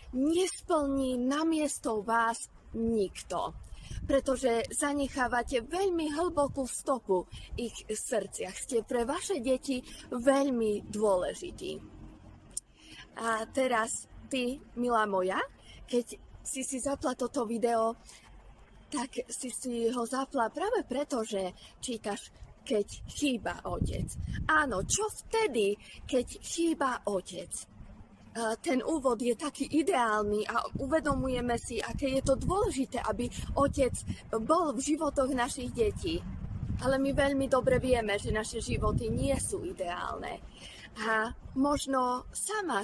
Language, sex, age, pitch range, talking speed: Slovak, female, 20-39, 225-280 Hz, 110 wpm